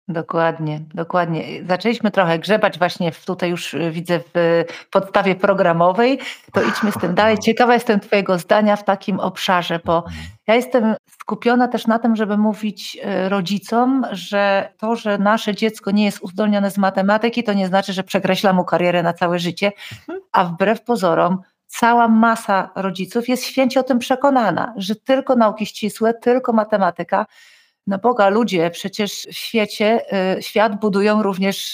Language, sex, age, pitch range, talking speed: Polish, female, 40-59, 185-225 Hz, 155 wpm